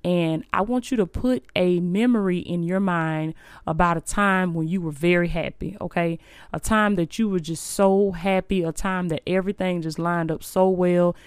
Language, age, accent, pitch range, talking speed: English, 20-39, American, 170-200 Hz, 195 wpm